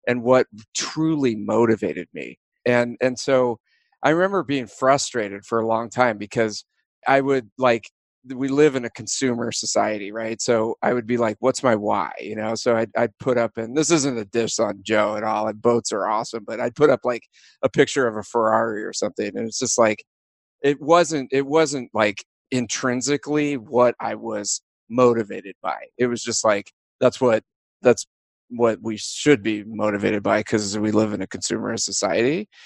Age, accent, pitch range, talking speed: 30-49, American, 110-135 Hz, 185 wpm